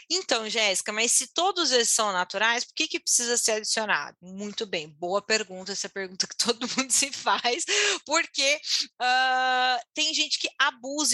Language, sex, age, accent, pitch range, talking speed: Portuguese, female, 20-39, Brazilian, 210-270 Hz, 180 wpm